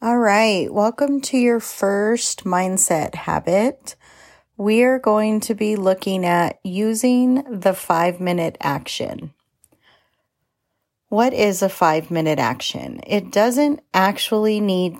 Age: 30-49